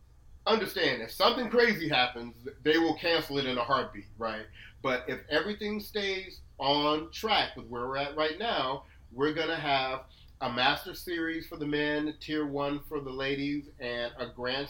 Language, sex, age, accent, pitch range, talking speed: English, male, 30-49, American, 115-150 Hz, 170 wpm